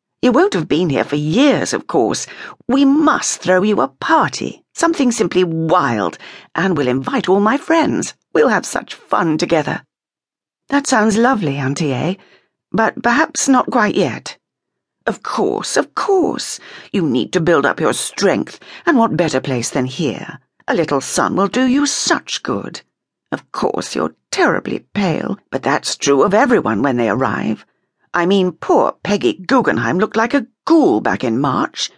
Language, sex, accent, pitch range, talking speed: English, female, British, 165-265 Hz, 165 wpm